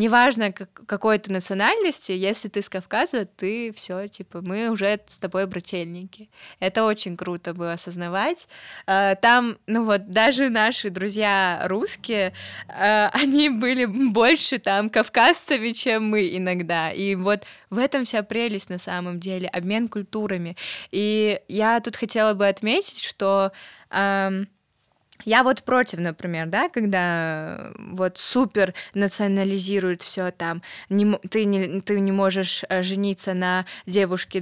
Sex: female